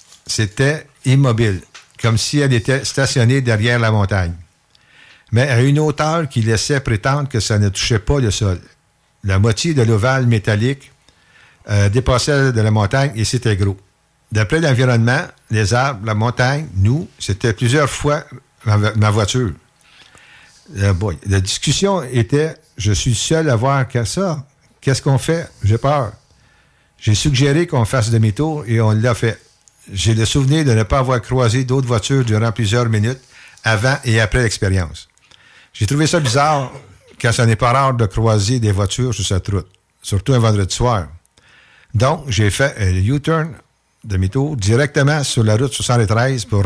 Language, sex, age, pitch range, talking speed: French, male, 60-79, 110-135 Hz, 160 wpm